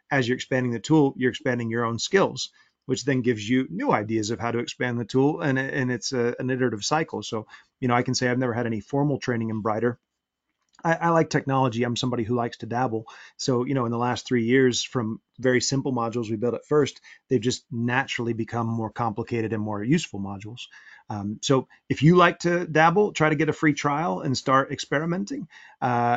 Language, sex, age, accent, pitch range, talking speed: English, male, 30-49, American, 115-135 Hz, 215 wpm